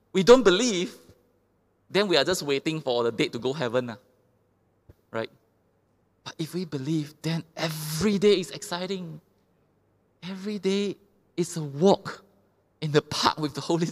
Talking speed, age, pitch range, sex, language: 155 wpm, 20-39, 115-165 Hz, male, English